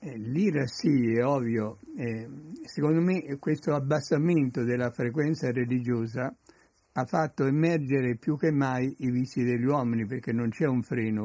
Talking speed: 145 wpm